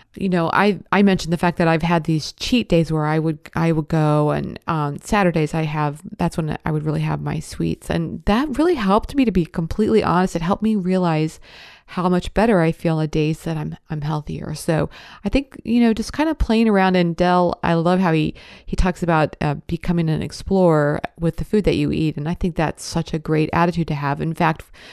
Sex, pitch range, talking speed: female, 160-195 Hz, 240 wpm